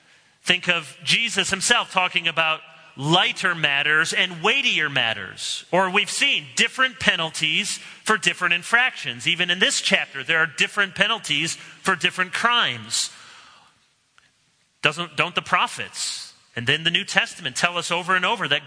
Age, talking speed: 40-59, 145 wpm